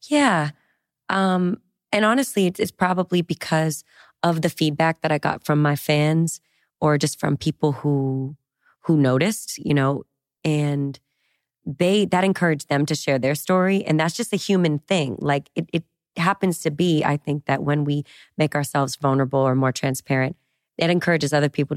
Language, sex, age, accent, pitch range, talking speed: English, female, 30-49, American, 145-175 Hz, 170 wpm